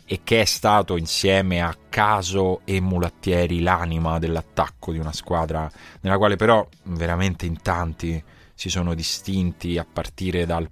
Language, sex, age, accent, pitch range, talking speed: Italian, male, 30-49, native, 80-95 Hz, 145 wpm